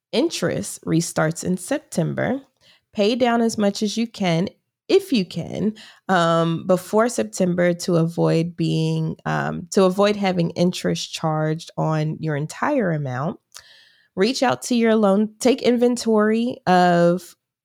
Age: 20-39